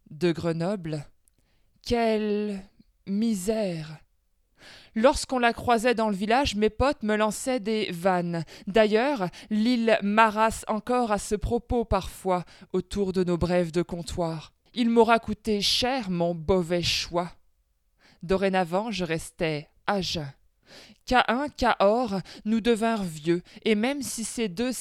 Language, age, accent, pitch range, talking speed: French, 20-39, French, 180-230 Hz, 130 wpm